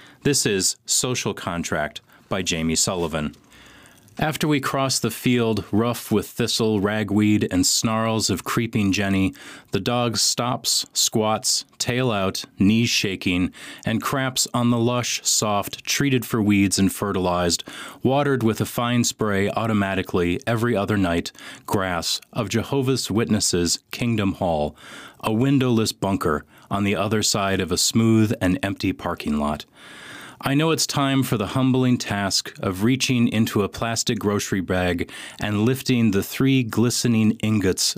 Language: English